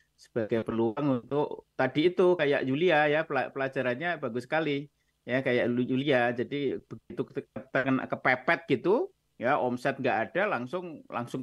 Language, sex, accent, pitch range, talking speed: Indonesian, male, native, 125-165 Hz, 125 wpm